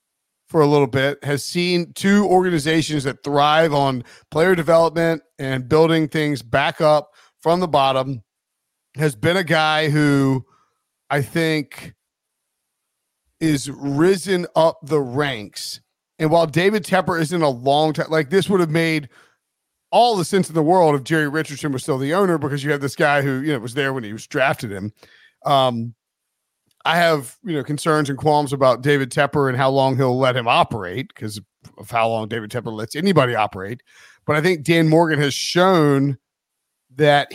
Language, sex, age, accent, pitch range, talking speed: English, male, 40-59, American, 135-165 Hz, 175 wpm